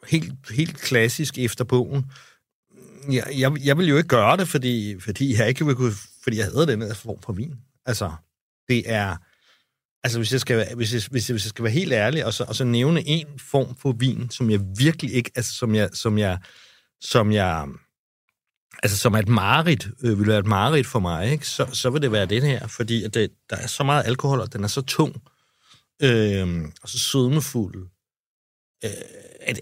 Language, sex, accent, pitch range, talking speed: Danish, male, native, 105-130 Hz, 205 wpm